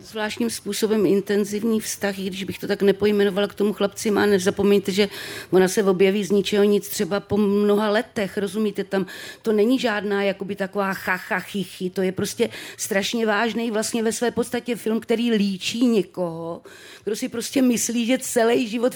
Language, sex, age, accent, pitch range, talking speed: Czech, female, 40-59, native, 195-230 Hz, 170 wpm